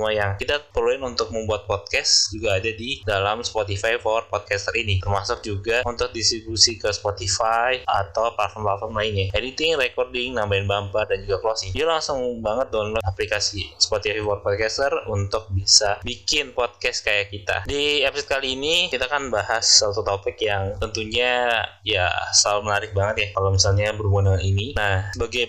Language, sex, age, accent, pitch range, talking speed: Indonesian, male, 20-39, native, 100-115 Hz, 155 wpm